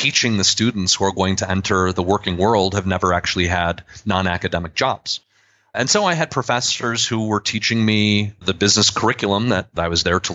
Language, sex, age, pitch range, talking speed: English, male, 30-49, 95-120 Hz, 195 wpm